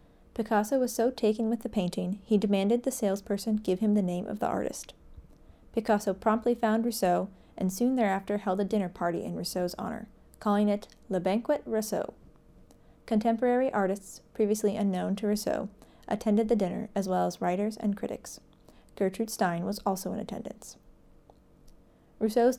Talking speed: 155 wpm